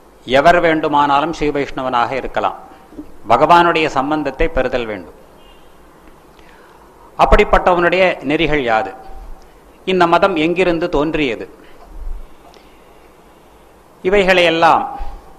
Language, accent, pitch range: Tamil, native, 150-185 Hz